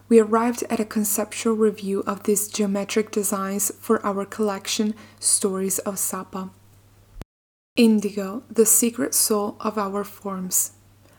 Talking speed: 125 wpm